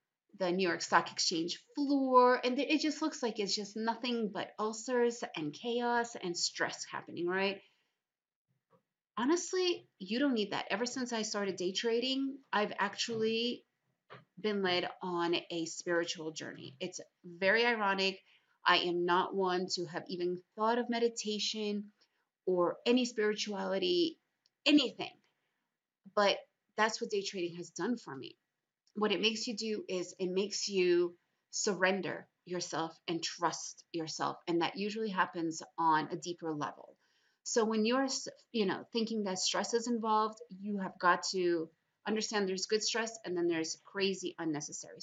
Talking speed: 150 wpm